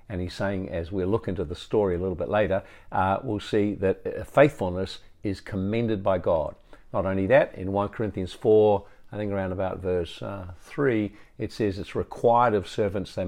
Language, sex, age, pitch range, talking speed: English, male, 50-69, 95-110 Hz, 195 wpm